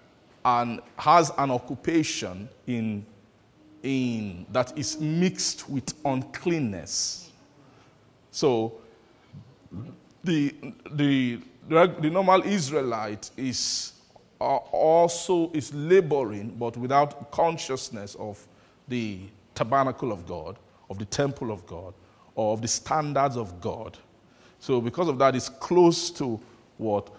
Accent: Nigerian